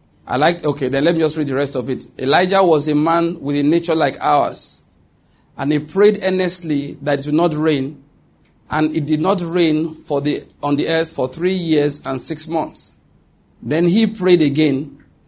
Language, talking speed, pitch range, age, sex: English, 195 wpm, 135-165 Hz, 50-69, male